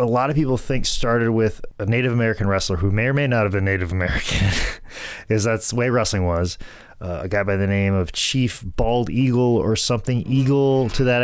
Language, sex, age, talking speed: English, male, 20-39, 220 wpm